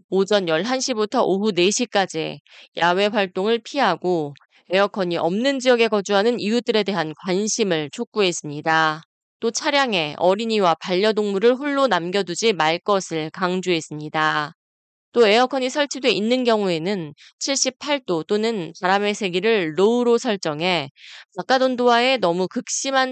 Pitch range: 170-235 Hz